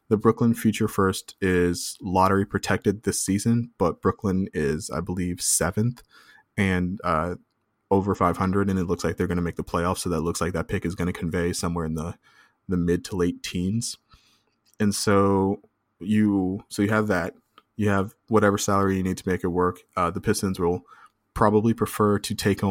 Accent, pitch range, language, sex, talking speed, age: American, 90-110 Hz, English, male, 195 wpm, 20-39